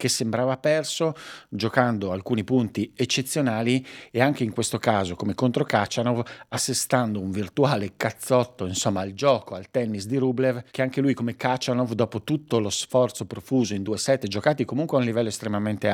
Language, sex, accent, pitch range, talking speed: Italian, male, native, 105-125 Hz, 170 wpm